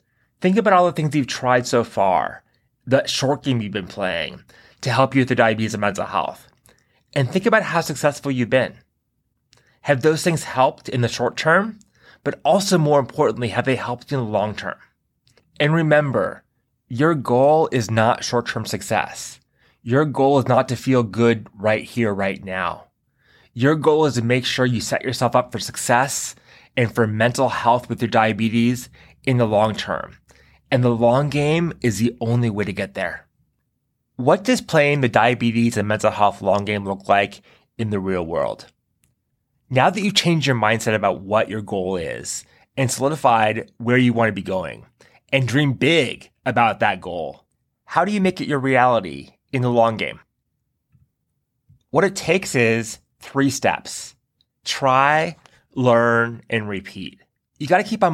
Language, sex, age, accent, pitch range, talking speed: English, male, 20-39, American, 115-145 Hz, 175 wpm